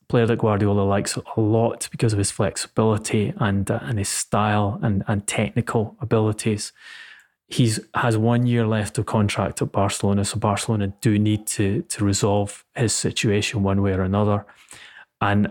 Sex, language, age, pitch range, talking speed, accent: male, English, 20-39, 100-115 Hz, 165 wpm, British